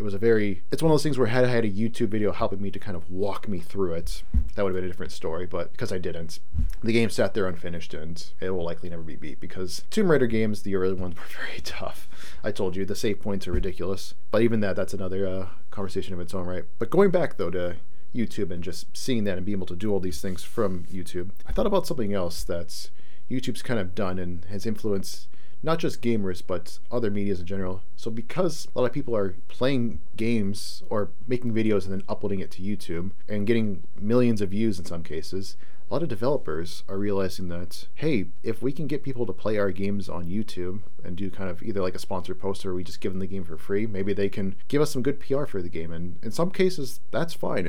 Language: English